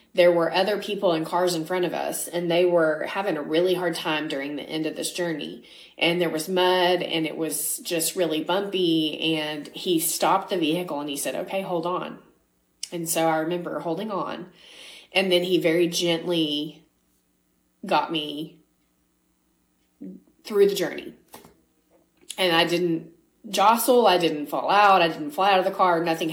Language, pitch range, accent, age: English, 160-195 Hz, American, 20-39